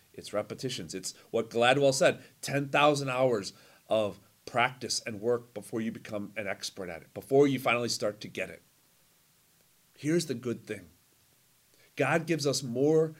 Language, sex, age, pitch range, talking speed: English, male, 30-49, 120-150 Hz, 155 wpm